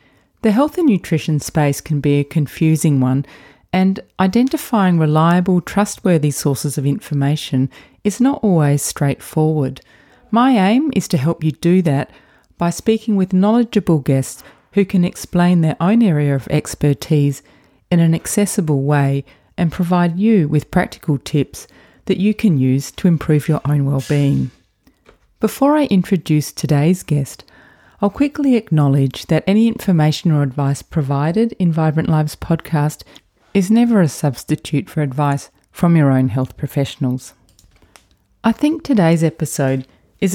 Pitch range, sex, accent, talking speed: 140-185 Hz, female, Australian, 140 wpm